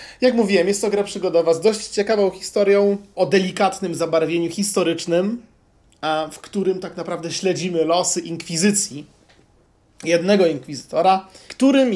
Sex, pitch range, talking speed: male, 155-195 Hz, 120 wpm